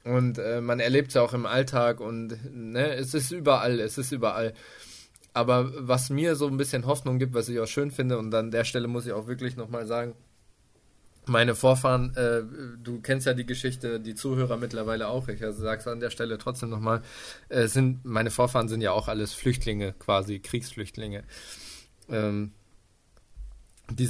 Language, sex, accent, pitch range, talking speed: German, male, German, 110-130 Hz, 180 wpm